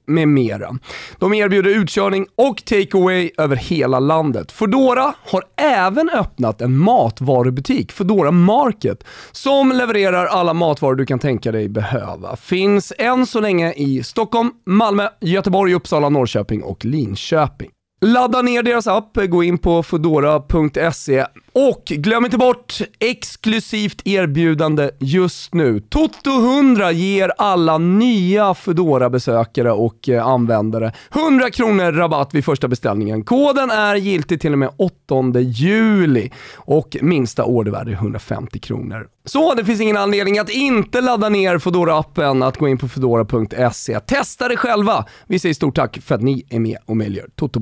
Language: Swedish